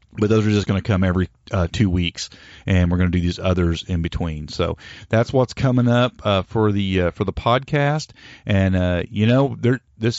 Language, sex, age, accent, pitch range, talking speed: English, male, 30-49, American, 90-110 Hz, 220 wpm